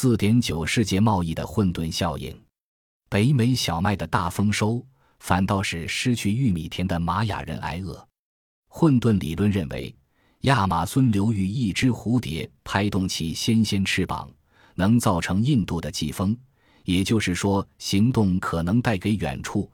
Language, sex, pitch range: Chinese, male, 85-110 Hz